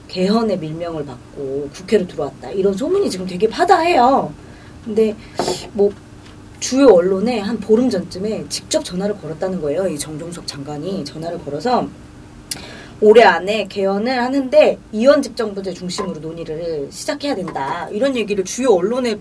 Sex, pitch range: female, 185-275 Hz